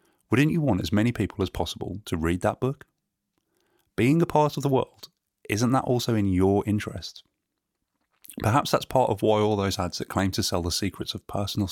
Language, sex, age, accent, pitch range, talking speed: English, male, 30-49, British, 90-105 Hz, 205 wpm